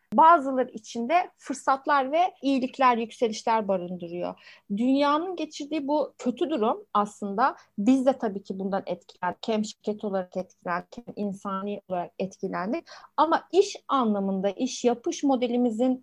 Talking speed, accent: 125 wpm, native